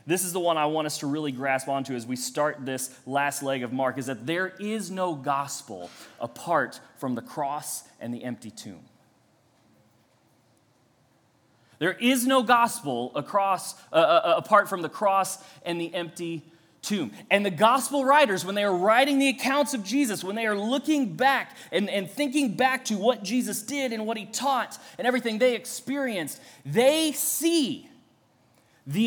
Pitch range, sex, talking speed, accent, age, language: 140-220 Hz, male, 170 wpm, American, 30-49, English